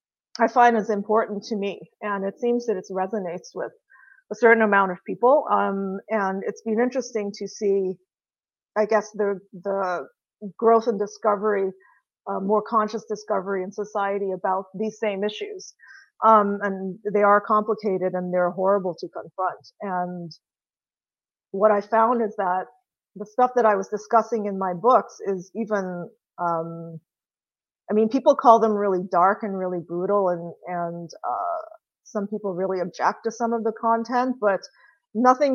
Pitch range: 190-225 Hz